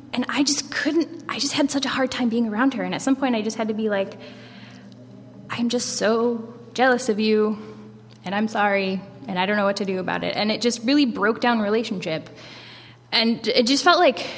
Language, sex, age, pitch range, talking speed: English, female, 10-29, 195-240 Hz, 225 wpm